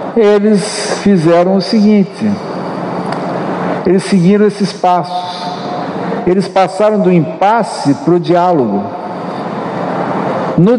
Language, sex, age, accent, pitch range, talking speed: Portuguese, male, 60-79, Brazilian, 165-210 Hz, 90 wpm